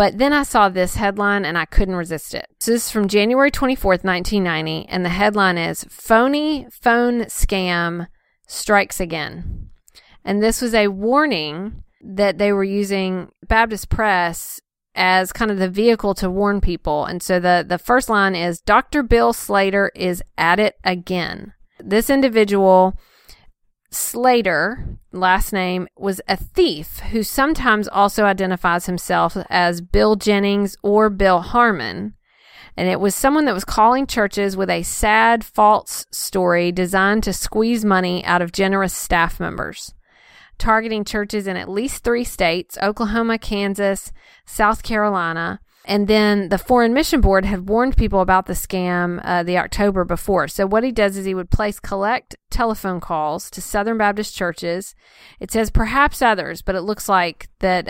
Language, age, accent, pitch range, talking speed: English, 40-59, American, 180-220 Hz, 155 wpm